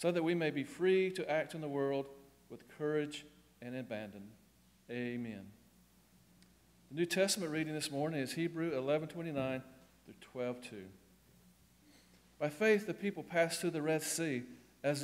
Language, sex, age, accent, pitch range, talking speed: English, male, 40-59, American, 120-155 Hz, 160 wpm